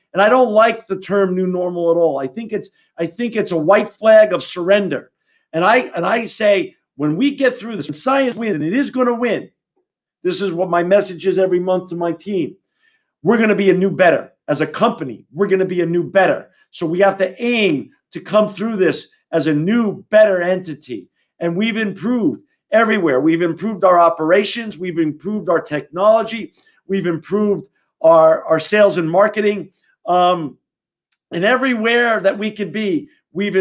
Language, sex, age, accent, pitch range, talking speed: English, male, 50-69, American, 170-215 Hz, 195 wpm